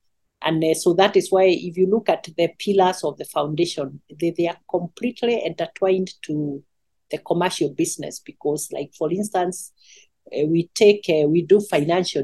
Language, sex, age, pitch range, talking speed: English, female, 40-59, 150-190 Hz, 150 wpm